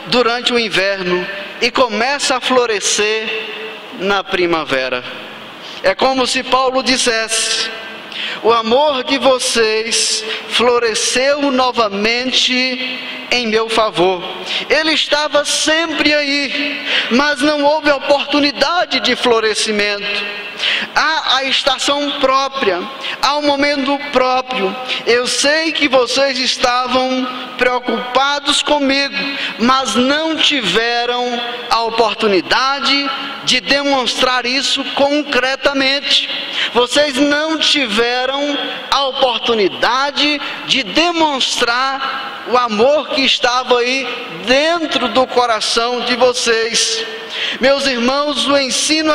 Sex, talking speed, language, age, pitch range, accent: male, 95 wpm, Portuguese, 20-39, 245-290 Hz, Brazilian